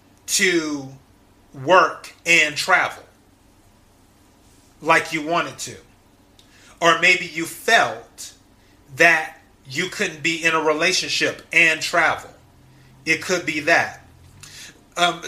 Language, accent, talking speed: English, American, 100 wpm